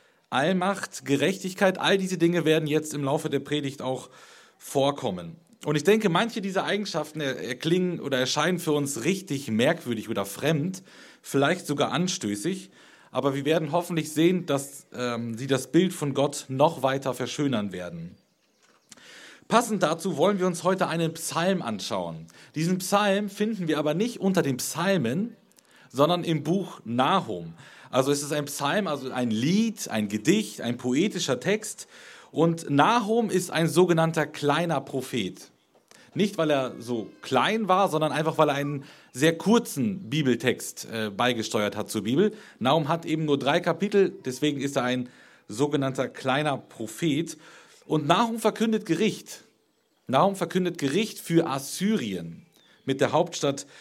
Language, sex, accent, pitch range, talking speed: German, male, German, 135-185 Hz, 150 wpm